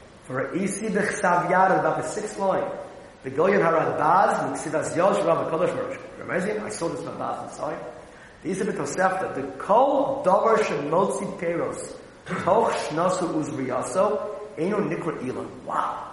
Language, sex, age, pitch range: English, male, 40-59, 165-250 Hz